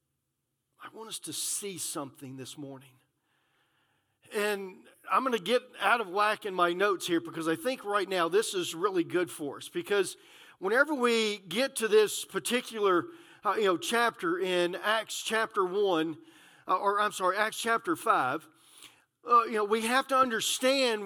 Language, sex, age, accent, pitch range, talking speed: English, male, 50-69, American, 205-280 Hz, 170 wpm